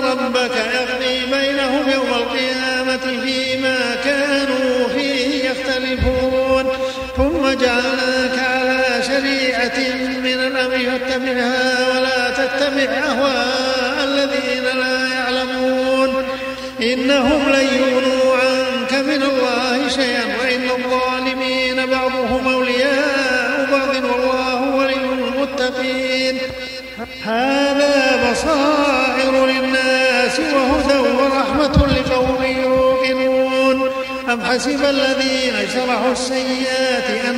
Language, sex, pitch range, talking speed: Arabic, male, 255-265 Hz, 80 wpm